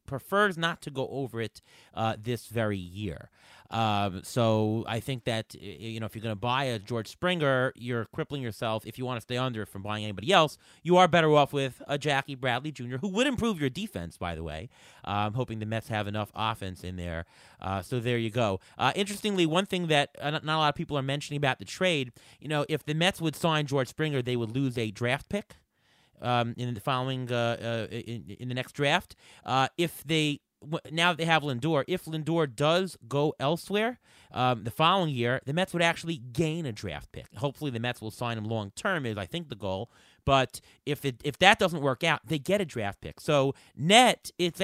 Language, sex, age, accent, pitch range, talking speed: English, male, 30-49, American, 110-160 Hz, 225 wpm